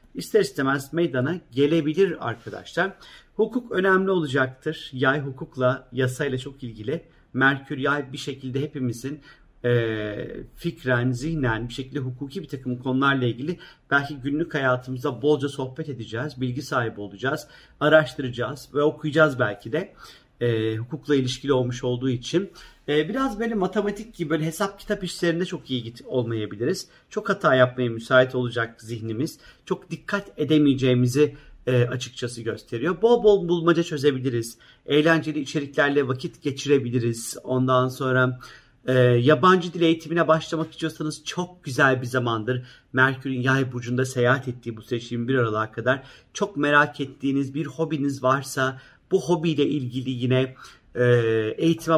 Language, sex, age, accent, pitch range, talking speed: Turkish, male, 40-59, native, 125-160 Hz, 130 wpm